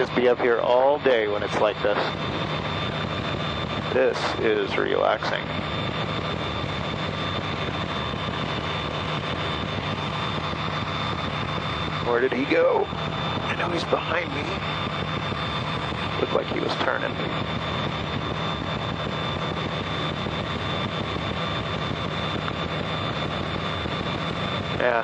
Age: 40-59